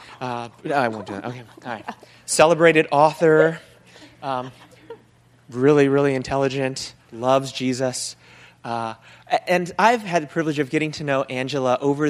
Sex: male